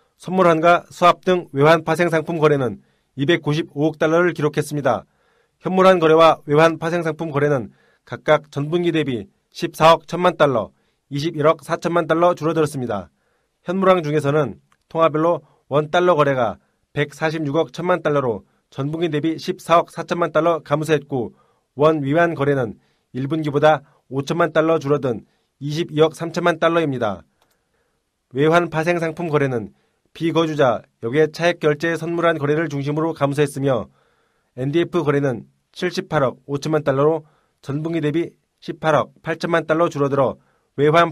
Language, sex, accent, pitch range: Korean, male, native, 145-170 Hz